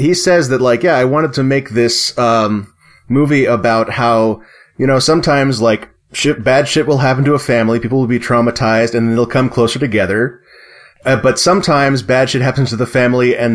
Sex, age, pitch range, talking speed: male, 30-49, 110-130 Hz, 195 wpm